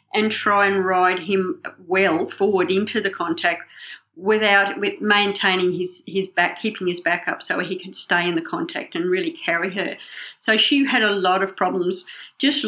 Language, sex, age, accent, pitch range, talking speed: English, female, 50-69, Australian, 185-235 Hz, 185 wpm